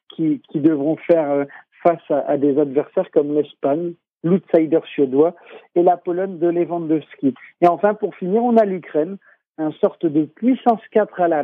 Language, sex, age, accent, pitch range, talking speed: French, male, 50-69, French, 150-180 Hz, 170 wpm